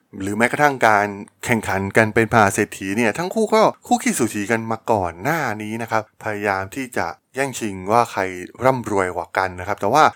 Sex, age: male, 20-39